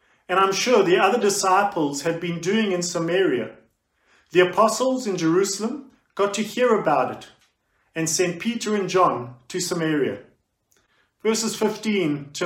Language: English